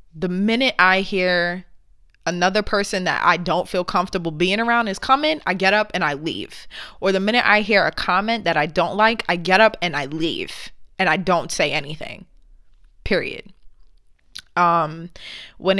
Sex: female